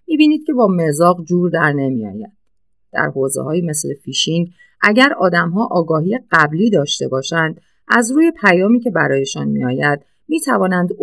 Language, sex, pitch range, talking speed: Persian, female, 150-220 Hz, 135 wpm